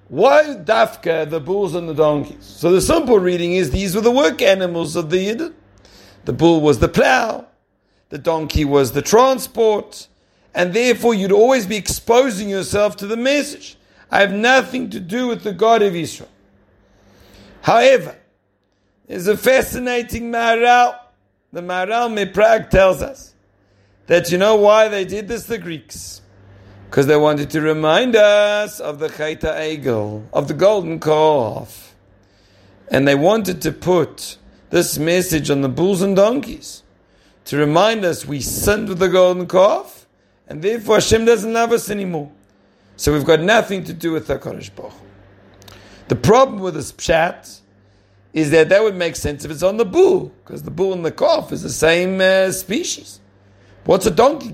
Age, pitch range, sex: 50-69, 140-215 Hz, male